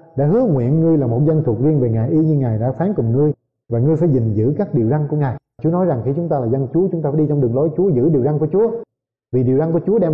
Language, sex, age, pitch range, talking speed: Vietnamese, male, 20-39, 125-165 Hz, 330 wpm